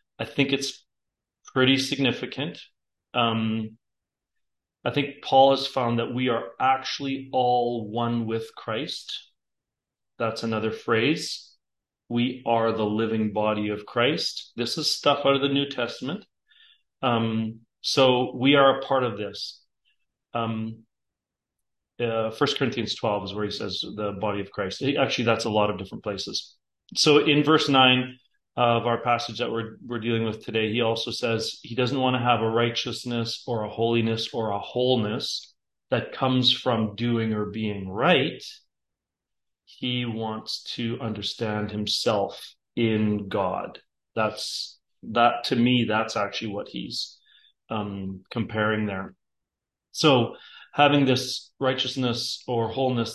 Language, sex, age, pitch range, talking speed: English, male, 40-59, 110-130 Hz, 140 wpm